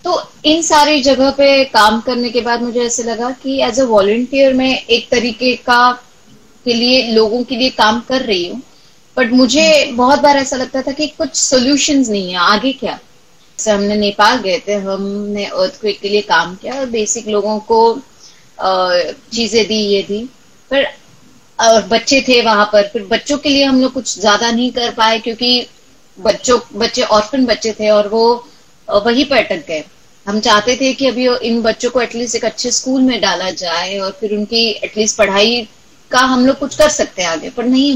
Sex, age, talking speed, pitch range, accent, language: female, 20-39, 160 wpm, 205-255 Hz, Indian, English